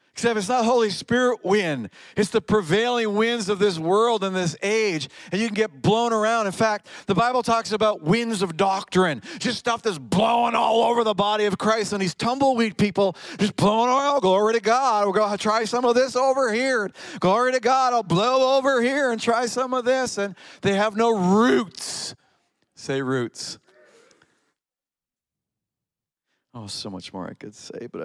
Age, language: 40-59, English